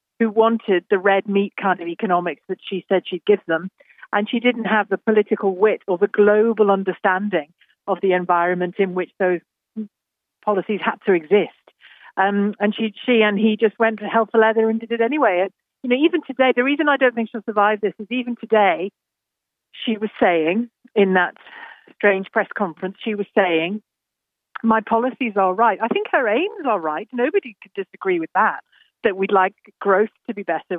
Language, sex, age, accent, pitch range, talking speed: English, female, 50-69, British, 185-225 Hz, 195 wpm